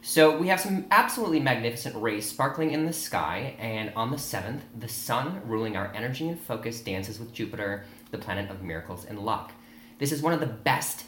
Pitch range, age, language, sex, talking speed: 100-140 Hz, 30-49, English, male, 200 wpm